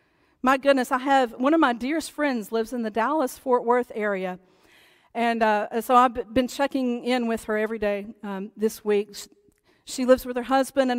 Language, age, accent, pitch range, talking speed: English, 50-69, American, 215-260 Hz, 190 wpm